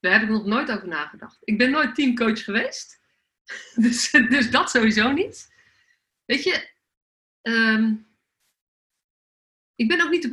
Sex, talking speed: female, 145 wpm